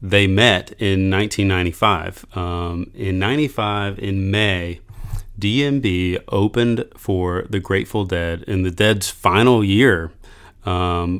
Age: 30-49